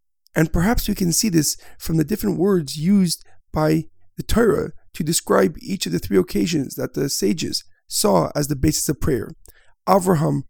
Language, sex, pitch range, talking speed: English, male, 145-190 Hz, 175 wpm